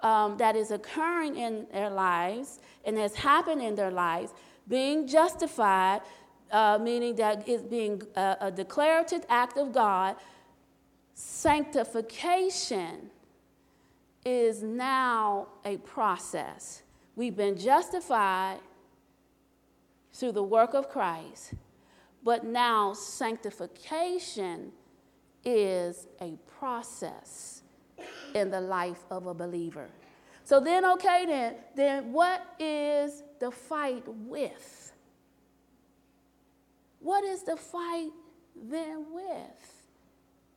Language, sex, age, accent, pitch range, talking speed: English, female, 40-59, American, 195-295 Hz, 100 wpm